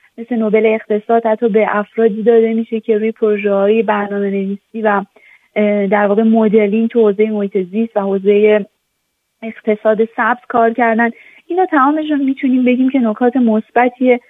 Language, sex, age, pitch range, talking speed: Persian, female, 30-49, 215-245 Hz, 145 wpm